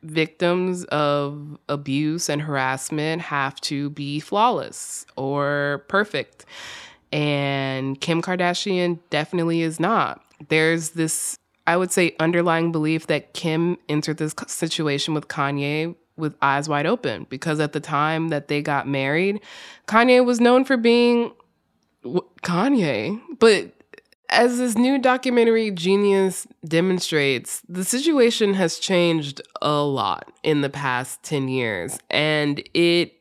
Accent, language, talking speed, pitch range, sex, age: American, English, 125 wpm, 140-175 Hz, female, 20-39